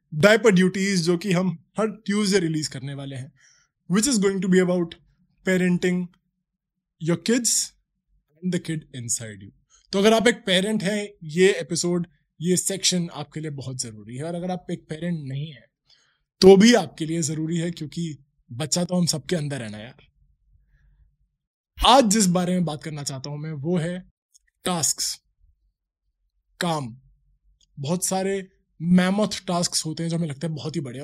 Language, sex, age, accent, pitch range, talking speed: Hindi, male, 20-39, native, 145-190 Hz, 145 wpm